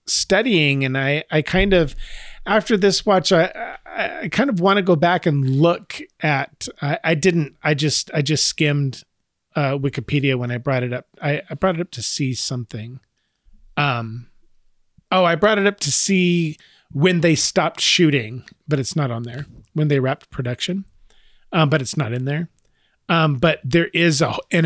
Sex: male